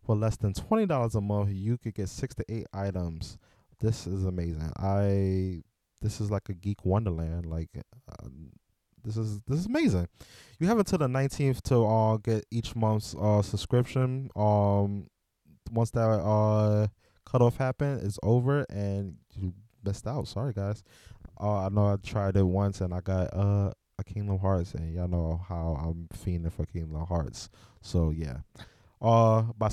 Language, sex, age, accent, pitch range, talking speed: English, male, 20-39, American, 95-110 Hz, 170 wpm